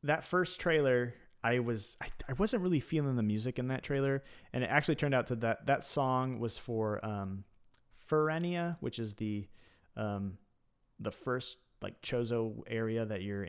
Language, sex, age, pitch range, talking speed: English, male, 30-49, 105-135 Hz, 175 wpm